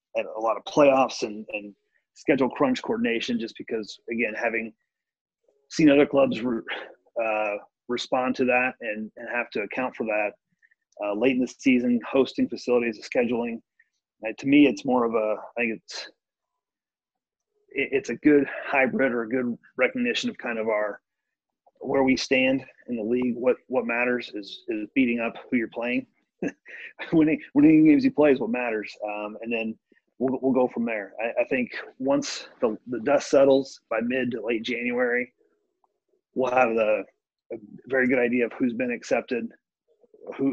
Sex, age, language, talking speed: male, 30-49, English, 175 wpm